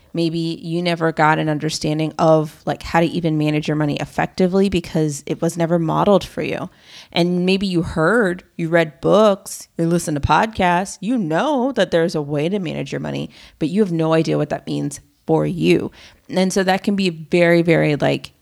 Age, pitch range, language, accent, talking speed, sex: 30-49, 155-180 Hz, English, American, 200 wpm, female